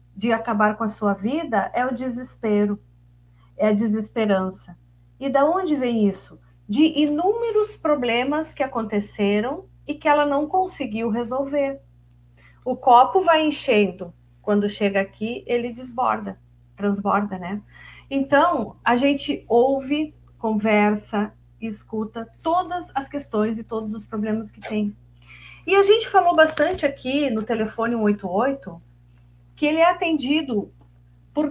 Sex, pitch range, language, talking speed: female, 200-275 Hz, Portuguese, 130 wpm